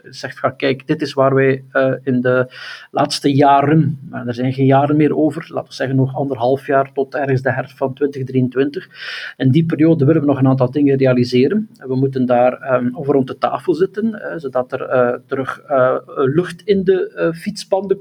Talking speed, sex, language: 200 wpm, male, Dutch